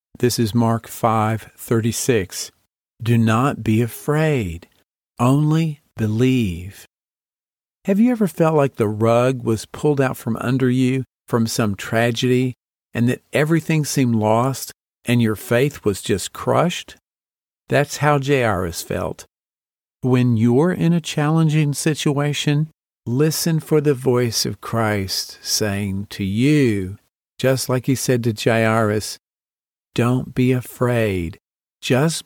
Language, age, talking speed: English, 50-69, 125 wpm